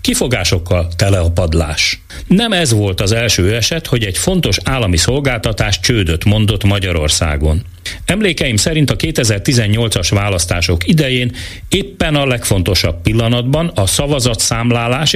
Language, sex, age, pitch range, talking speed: Hungarian, male, 40-59, 90-125 Hz, 115 wpm